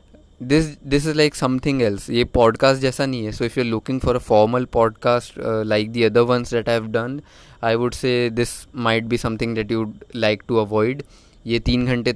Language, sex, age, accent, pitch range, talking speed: Hindi, male, 20-39, native, 110-125 Hz, 215 wpm